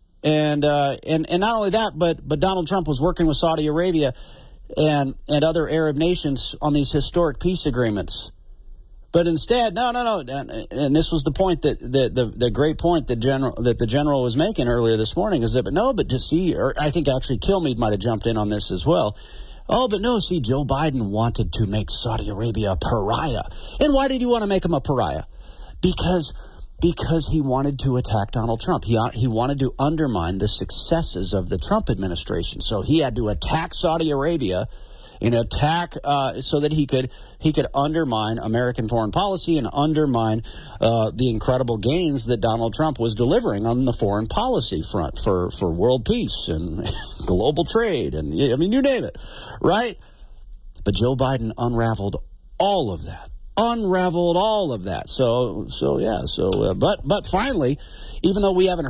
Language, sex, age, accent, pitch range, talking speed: English, male, 40-59, American, 110-160 Hz, 195 wpm